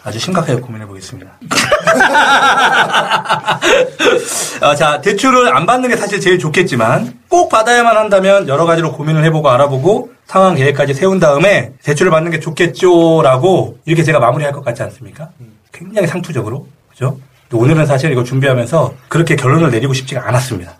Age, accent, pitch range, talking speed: 40-59, Korean, 125-185 Hz, 135 wpm